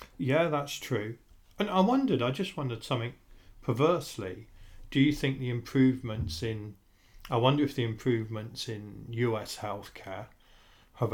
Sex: male